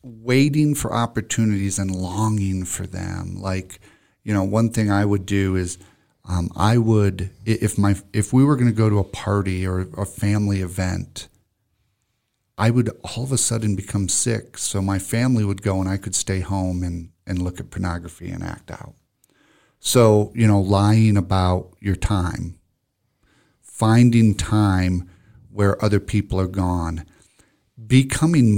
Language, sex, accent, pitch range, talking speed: English, male, American, 95-110 Hz, 160 wpm